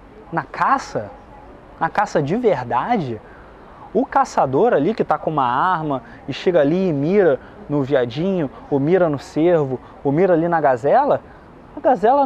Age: 20-39